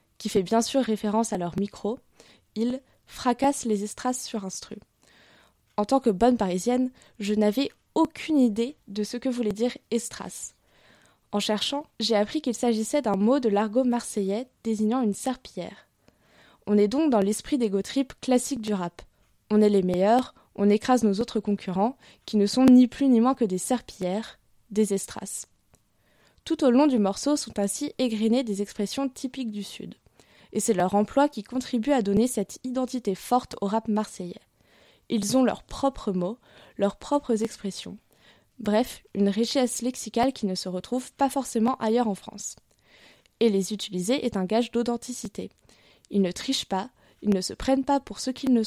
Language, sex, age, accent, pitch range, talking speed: French, female, 20-39, French, 205-255 Hz, 180 wpm